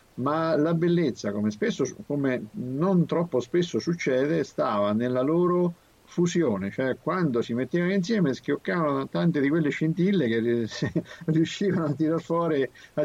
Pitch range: 110-160 Hz